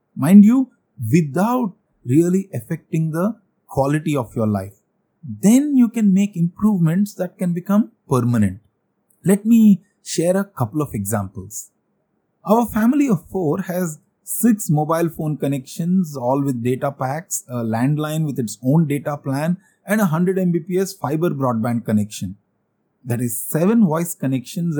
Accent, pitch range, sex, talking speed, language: Indian, 135-200 Hz, male, 140 wpm, English